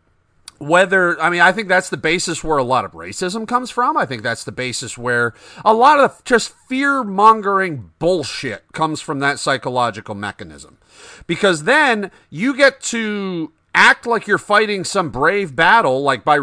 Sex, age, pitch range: male, 40-59, 145-200 Hz